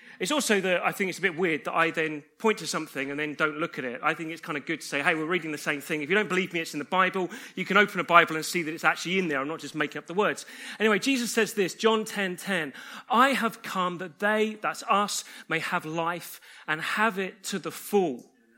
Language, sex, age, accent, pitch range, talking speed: English, male, 30-49, British, 165-230 Hz, 280 wpm